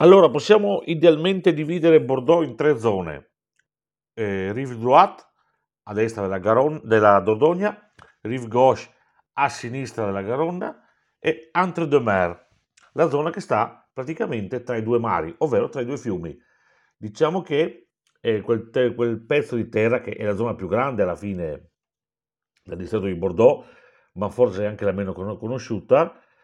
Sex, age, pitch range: male, 50-69, 95-130 Hz